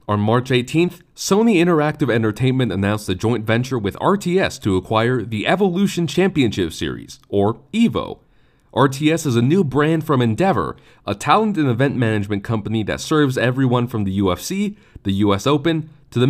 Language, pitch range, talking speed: English, 105-150 Hz, 160 wpm